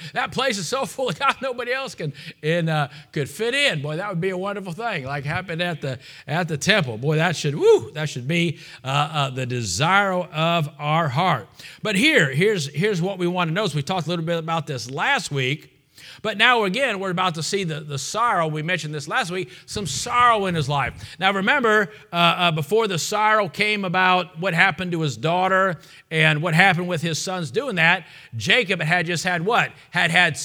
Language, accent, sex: English, American, male